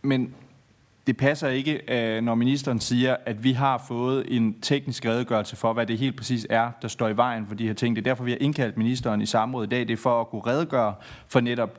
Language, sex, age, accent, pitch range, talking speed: Danish, male, 30-49, native, 110-135 Hz, 240 wpm